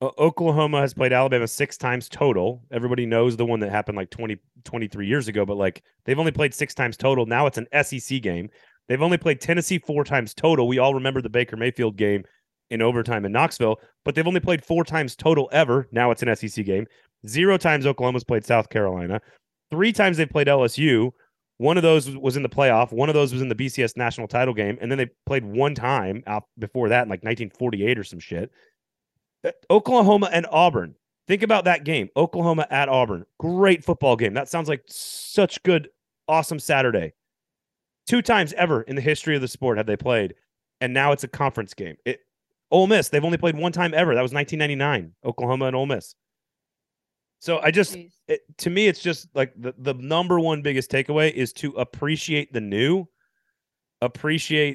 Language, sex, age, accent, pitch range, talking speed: English, male, 30-49, American, 120-160 Hz, 195 wpm